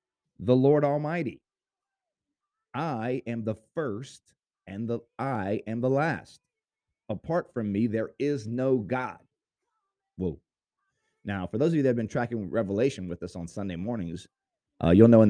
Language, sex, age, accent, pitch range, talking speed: English, male, 30-49, American, 105-155 Hz, 155 wpm